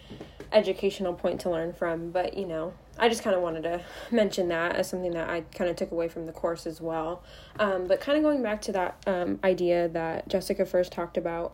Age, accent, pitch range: 10-29, American, 170-195 Hz